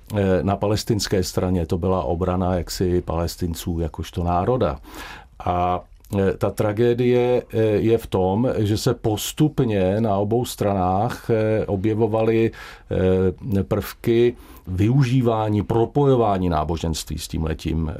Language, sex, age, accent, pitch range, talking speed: Czech, male, 50-69, native, 85-105 Hz, 100 wpm